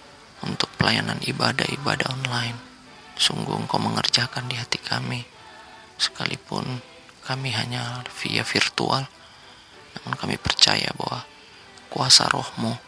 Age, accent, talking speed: 30-49, native, 100 wpm